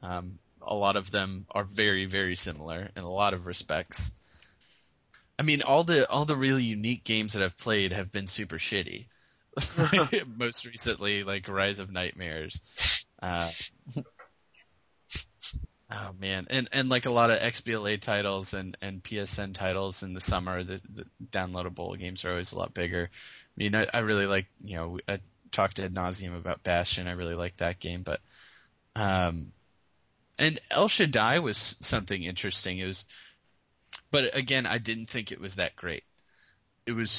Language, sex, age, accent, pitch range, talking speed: English, male, 20-39, American, 90-110 Hz, 170 wpm